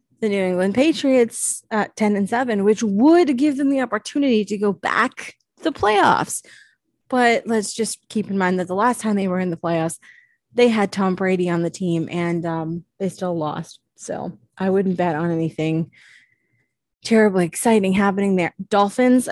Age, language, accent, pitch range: 20-39, English, American, 180-235 Hz